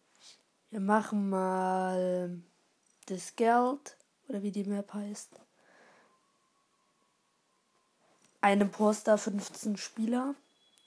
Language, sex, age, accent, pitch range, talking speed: German, female, 20-39, German, 190-220 Hz, 75 wpm